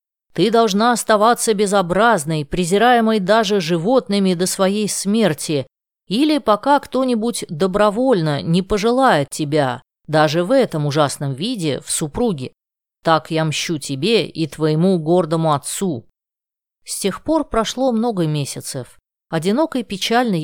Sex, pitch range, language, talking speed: female, 155-215 Hz, Russian, 115 wpm